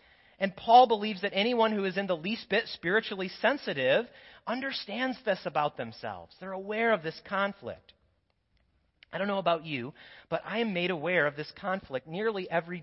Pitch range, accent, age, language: 175-240 Hz, American, 40-59, English